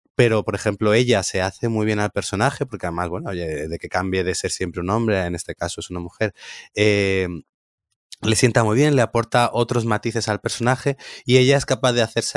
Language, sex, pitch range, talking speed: Spanish, male, 95-115 Hz, 220 wpm